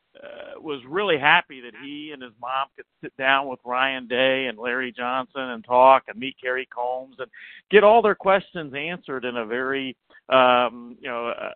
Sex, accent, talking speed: male, American, 190 wpm